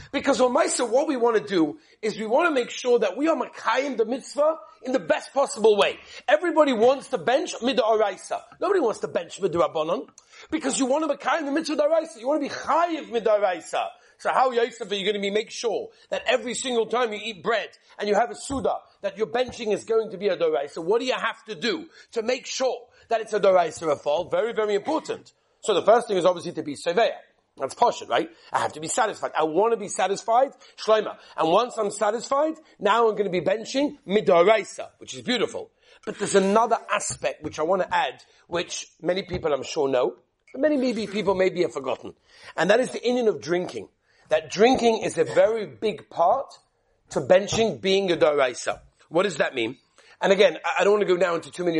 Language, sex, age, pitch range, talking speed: English, male, 40-59, 200-280 Hz, 220 wpm